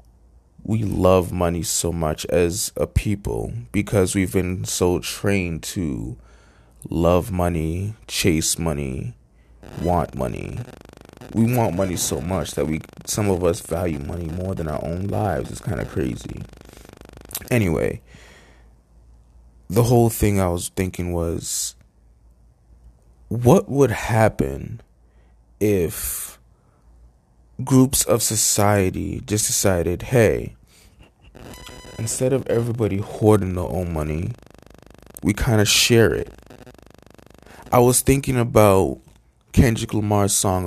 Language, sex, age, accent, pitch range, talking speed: English, male, 20-39, American, 75-105 Hz, 115 wpm